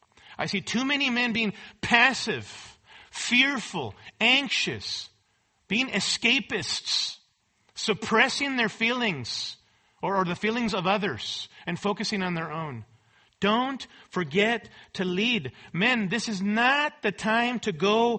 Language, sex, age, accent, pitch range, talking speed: English, male, 40-59, American, 165-225 Hz, 120 wpm